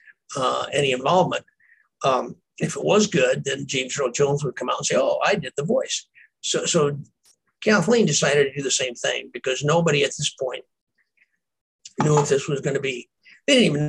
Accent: American